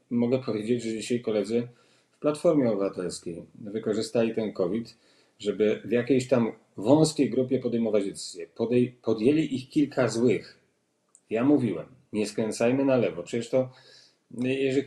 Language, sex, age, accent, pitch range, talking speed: Polish, male, 40-59, native, 110-135 Hz, 130 wpm